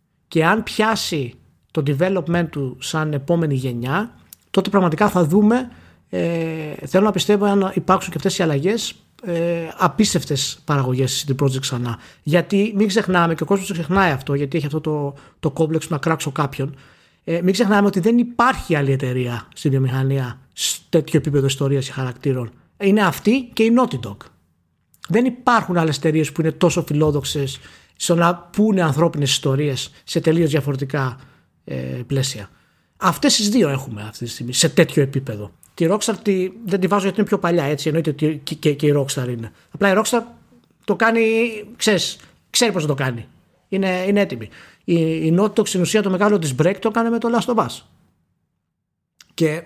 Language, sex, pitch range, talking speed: Greek, male, 140-200 Hz, 170 wpm